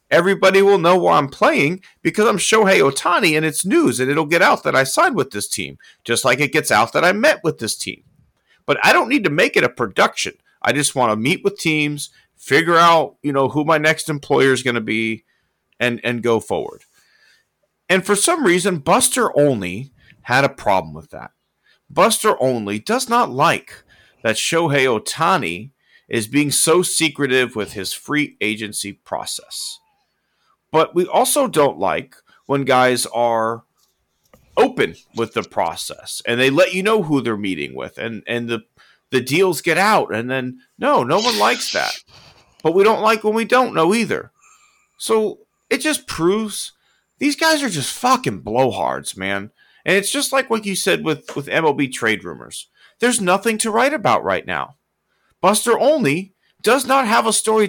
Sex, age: male, 40-59